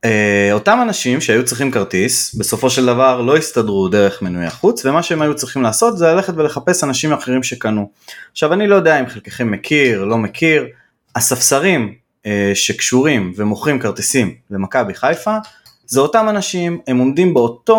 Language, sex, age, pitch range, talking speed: Hebrew, male, 20-39, 105-170 Hz, 165 wpm